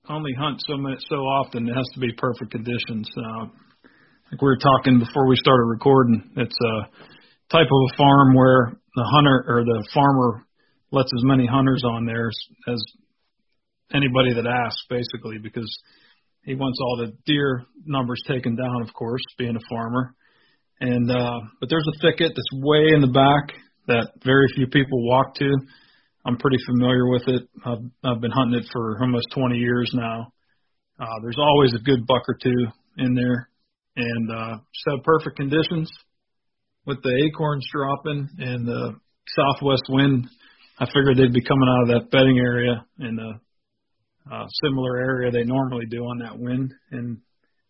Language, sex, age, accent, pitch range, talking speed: English, male, 40-59, American, 120-135 Hz, 170 wpm